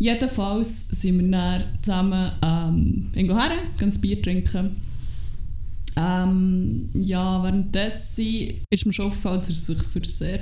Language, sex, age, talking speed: German, female, 20-39, 135 wpm